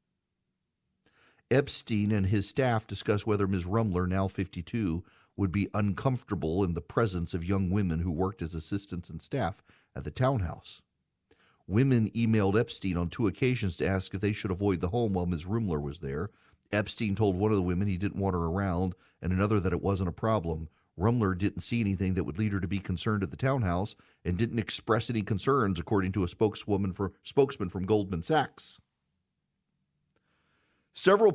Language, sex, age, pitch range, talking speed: English, male, 40-59, 95-140 Hz, 180 wpm